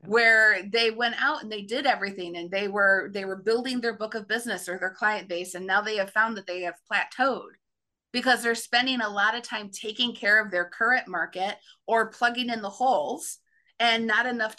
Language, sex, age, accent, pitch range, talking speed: English, female, 30-49, American, 190-235 Hz, 215 wpm